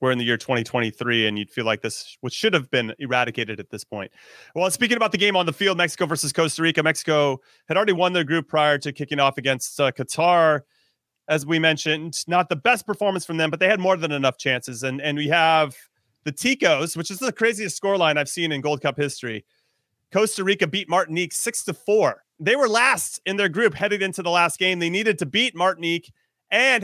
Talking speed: 225 wpm